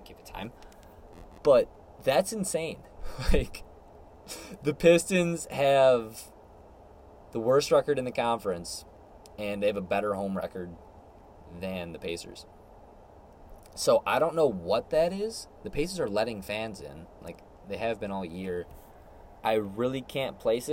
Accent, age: American, 20-39